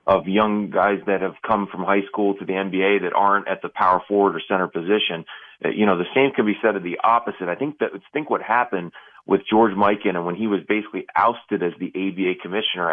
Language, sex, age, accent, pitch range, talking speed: English, male, 30-49, American, 90-105 Hz, 235 wpm